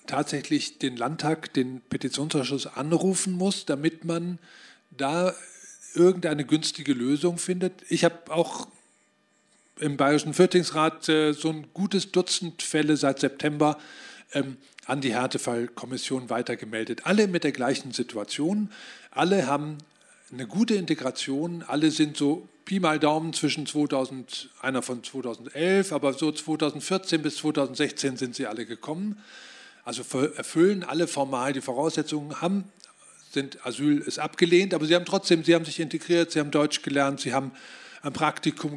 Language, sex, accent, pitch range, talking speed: German, male, German, 140-170 Hz, 135 wpm